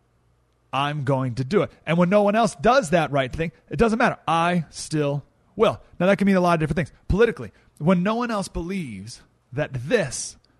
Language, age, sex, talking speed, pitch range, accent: English, 30-49, male, 210 wpm, 120-170 Hz, American